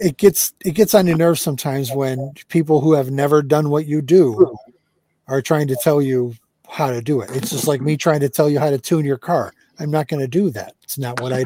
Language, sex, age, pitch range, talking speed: English, male, 50-69, 130-160 Hz, 255 wpm